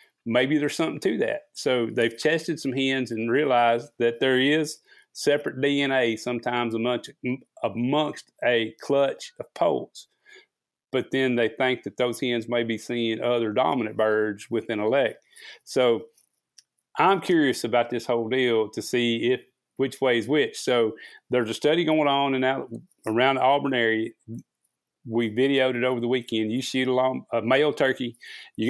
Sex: male